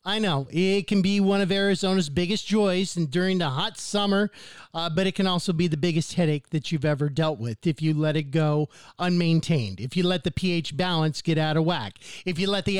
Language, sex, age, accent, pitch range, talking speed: English, male, 50-69, American, 170-220 Hz, 230 wpm